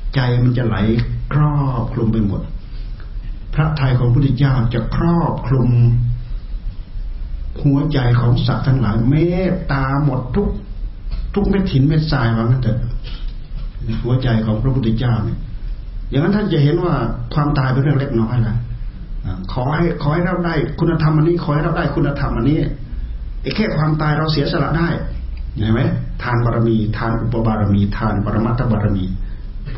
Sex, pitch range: male, 110-145 Hz